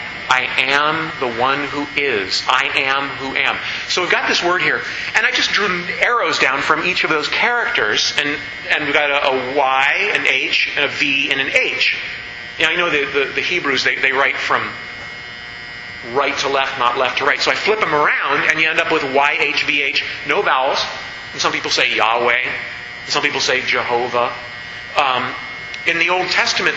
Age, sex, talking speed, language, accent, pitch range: 40-59, male, 205 wpm, English, American, 120-155 Hz